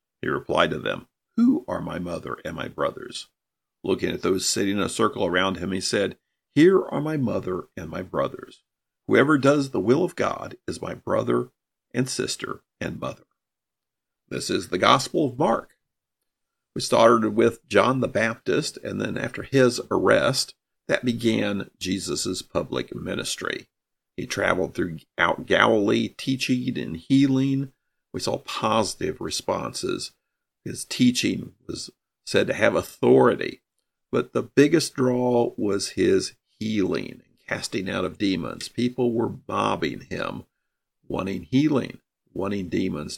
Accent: American